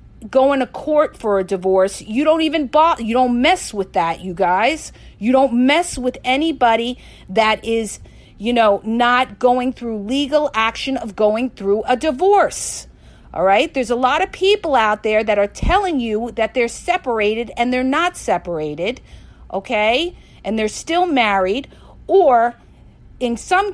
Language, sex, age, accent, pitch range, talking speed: English, female, 50-69, American, 235-345 Hz, 160 wpm